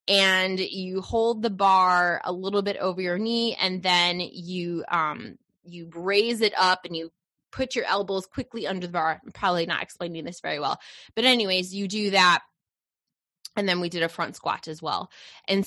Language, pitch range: English, 175-220 Hz